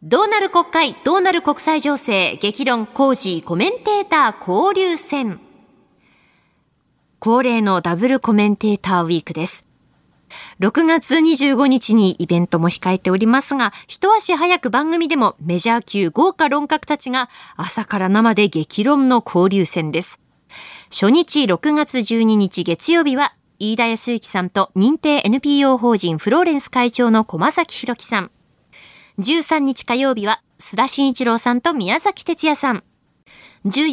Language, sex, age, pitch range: Japanese, female, 20-39, 210-300 Hz